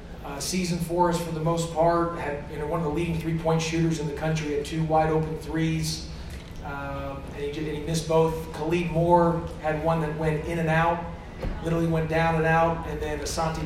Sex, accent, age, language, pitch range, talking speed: male, American, 40-59, English, 150-160 Hz, 215 wpm